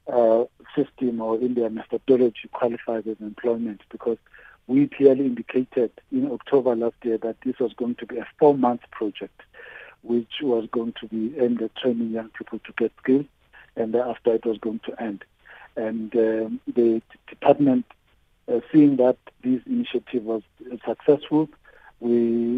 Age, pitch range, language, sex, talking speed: 50-69, 115-135 Hz, English, male, 160 wpm